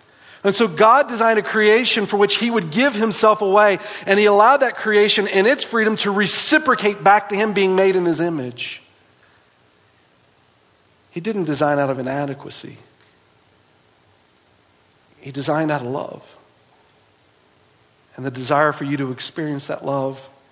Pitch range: 155-215 Hz